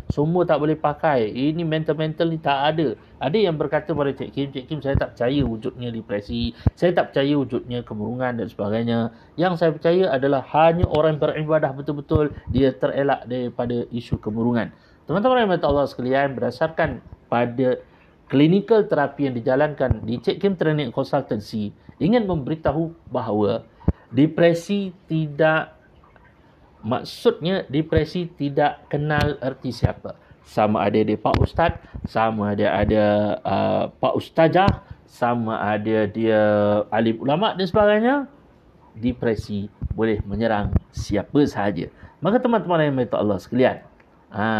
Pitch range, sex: 115-160 Hz, male